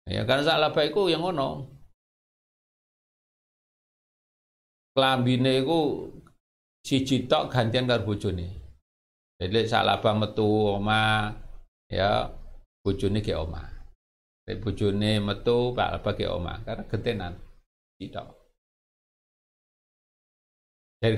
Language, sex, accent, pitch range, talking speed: Indonesian, male, native, 95-130 Hz, 80 wpm